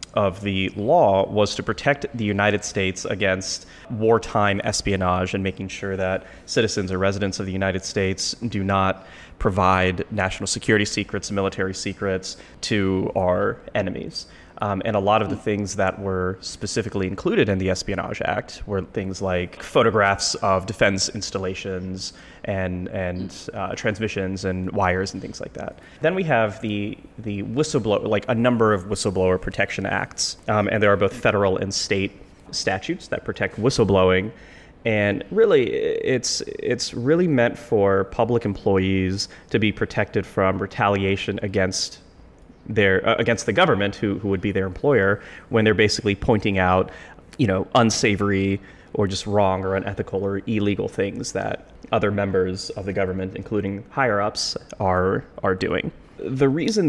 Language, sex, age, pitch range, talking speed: English, male, 20-39, 95-105 Hz, 155 wpm